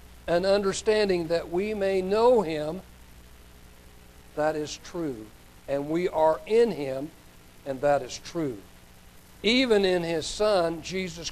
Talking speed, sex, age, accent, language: 125 wpm, male, 60-79, American, English